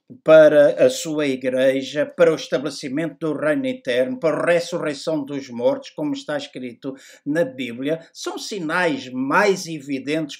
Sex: male